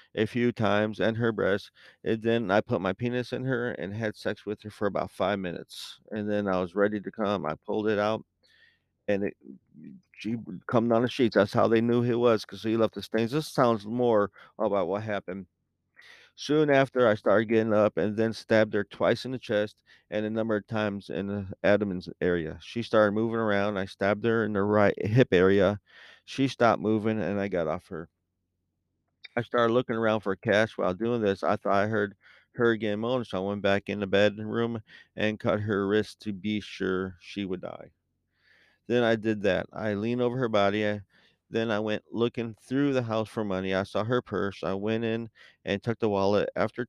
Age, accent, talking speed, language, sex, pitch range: 40-59, American, 210 wpm, English, male, 100-115 Hz